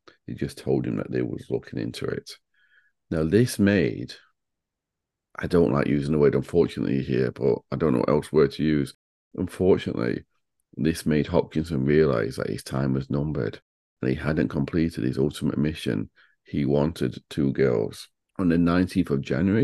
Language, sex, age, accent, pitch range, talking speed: English, male, 40-59, British, 70-85 Hz, 170 wpm